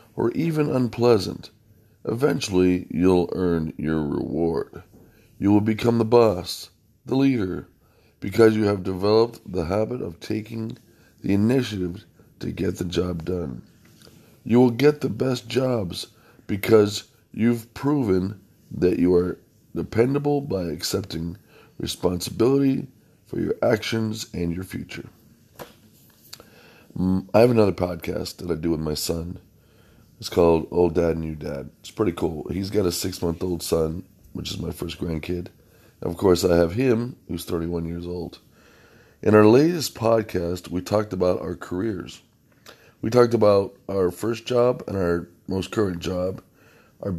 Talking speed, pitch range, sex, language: 140 wpm, 90-115 Hz, male, English